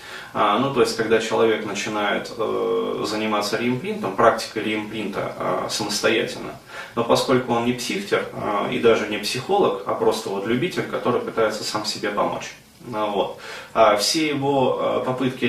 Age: 20-39